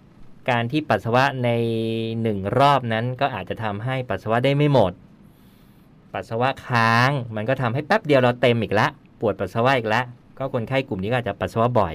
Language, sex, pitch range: Thai, male, 115-145 Hz